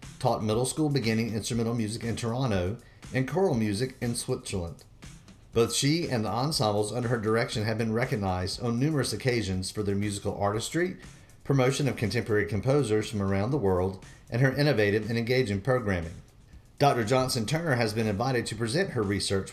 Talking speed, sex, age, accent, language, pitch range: 165 wpm, male, 40-59, American, English, 105-130 Hz